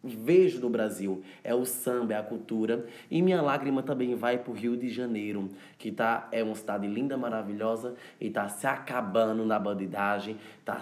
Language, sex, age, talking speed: Portuguese, male, 20-39, 185 wpm